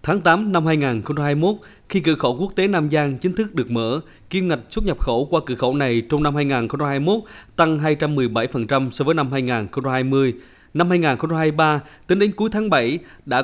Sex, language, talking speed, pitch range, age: male, Vietnamese, 185 wpm, 130-165 Hz, 20-39